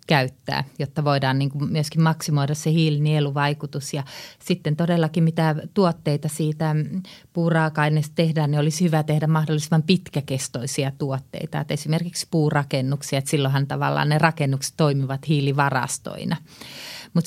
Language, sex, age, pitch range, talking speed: Finnish, female, 30-49, 135-155 Hz, 120 wpm